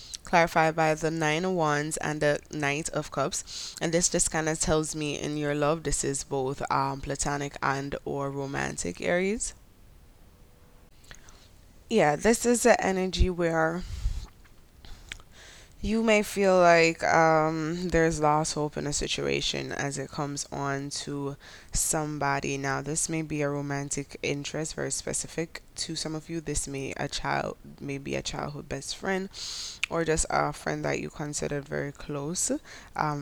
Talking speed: 155 wpm